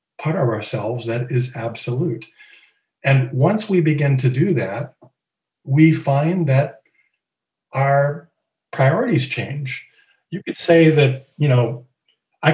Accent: American